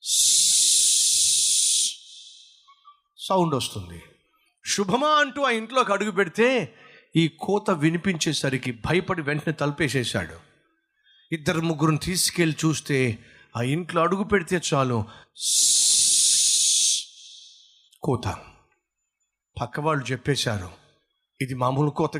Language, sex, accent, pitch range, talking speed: Telugu, male, native, 140-195 Hz, 45 wpm